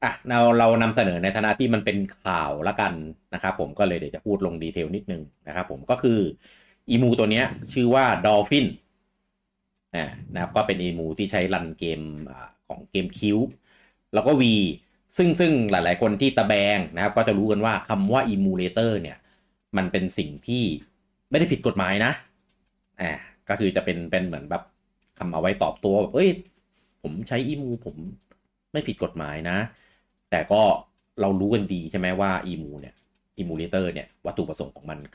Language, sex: Thai, male